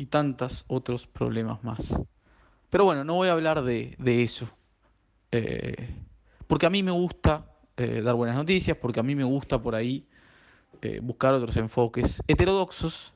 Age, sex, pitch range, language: 20-39, male, 120-160 Hz, Spanish